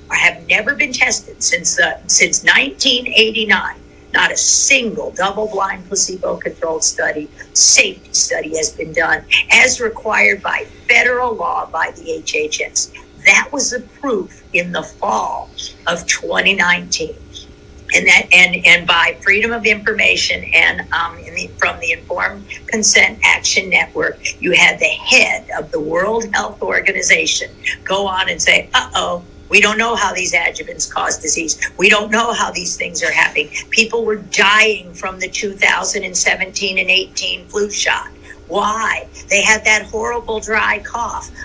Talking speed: 145 wpm